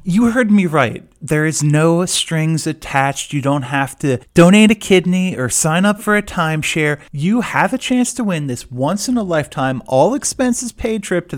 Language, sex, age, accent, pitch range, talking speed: English, male, 30-49, American, 125-175 Hz, 175 wpm